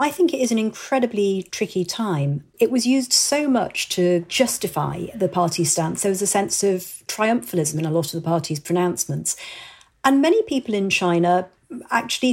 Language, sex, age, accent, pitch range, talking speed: English, female, 40-59, British, 185-240 Hz, 180 wpm